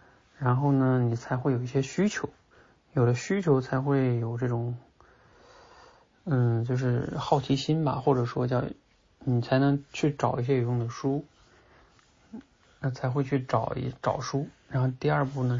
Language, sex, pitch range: Chinese, male, 115-135 Hz